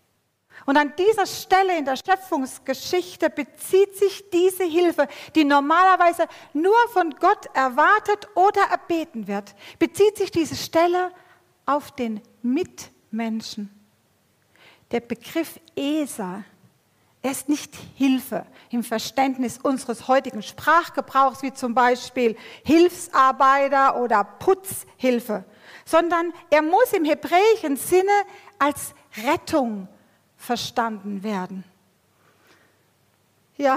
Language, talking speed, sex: German, 100 wpm, female